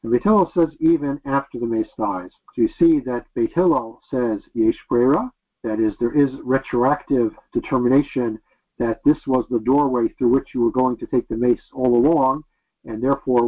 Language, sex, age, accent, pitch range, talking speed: English, male, 50-69, American, 120-145 Hz, 175 wpm